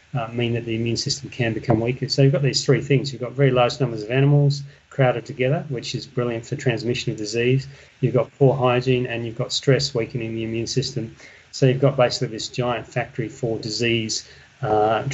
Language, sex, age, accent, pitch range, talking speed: English, male, 30-49, Australian, 115-140 Hz, 210 wpm